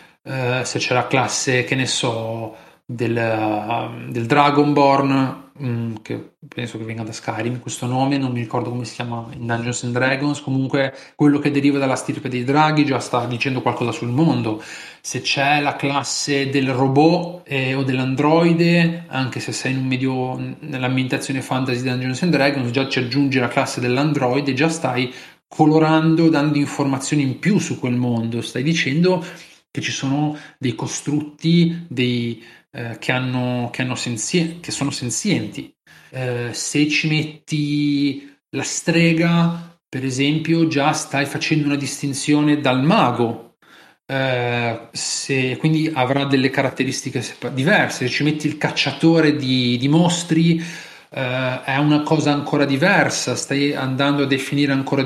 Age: 30-49